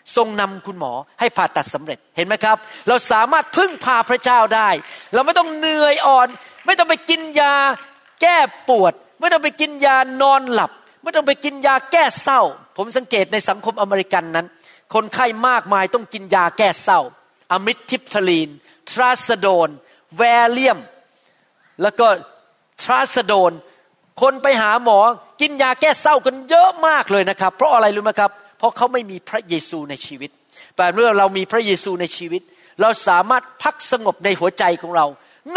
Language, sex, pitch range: Thai, male, 195-275 Hz